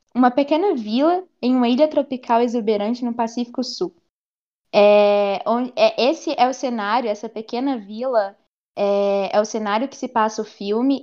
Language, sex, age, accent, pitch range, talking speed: Portuguese, female, 10-29, Brazilian, 205-250 Hz, 145 wpm